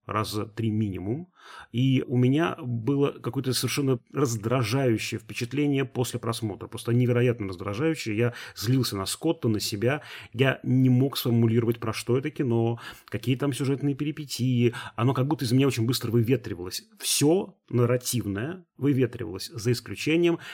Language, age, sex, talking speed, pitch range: Russian, 30-49, male, 140 wpm, 105-130 Hz